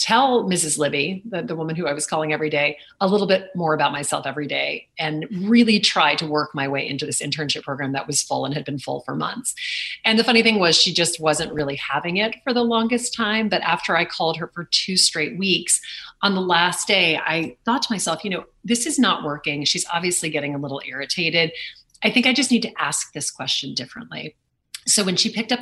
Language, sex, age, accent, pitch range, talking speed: English, female, 30-49, American, 150-210 Hz, 230 wpm